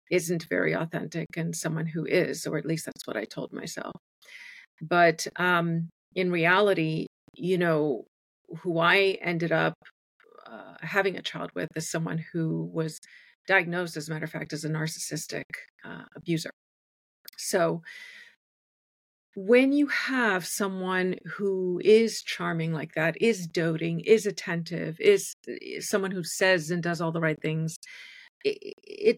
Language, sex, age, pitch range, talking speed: English, female, 40-59, 160-210 Hz, 145 wpm